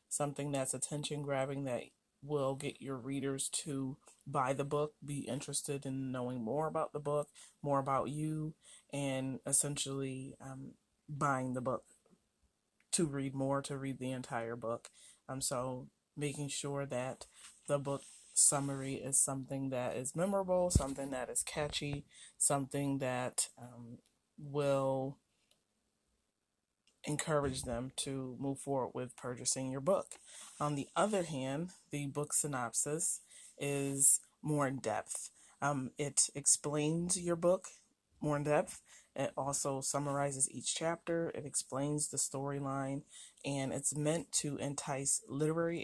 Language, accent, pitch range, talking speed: English, American, 135-150 Hz, 130 wpm